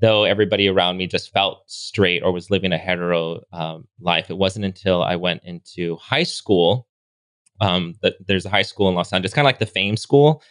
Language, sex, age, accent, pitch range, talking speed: English, male, 20-39, American, 90-110 Hz, 210 wpm